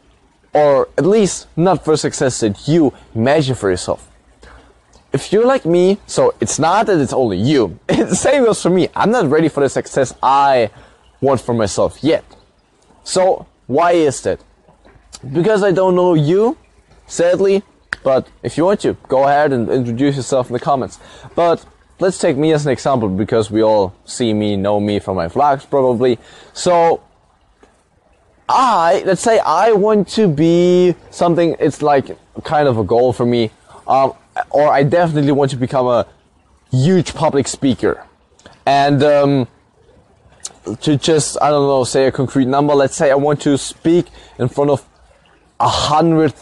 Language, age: English, 20-39